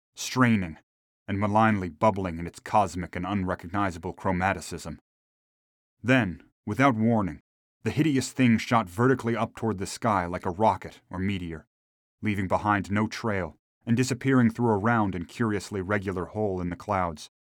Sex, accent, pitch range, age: male, American, 90-115 Hz, 30-49